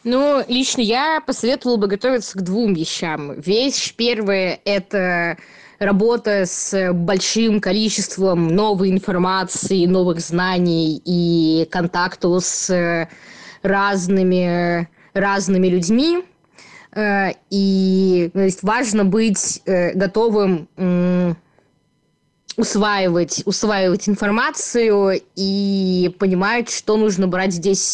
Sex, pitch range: female, 180-210 Hz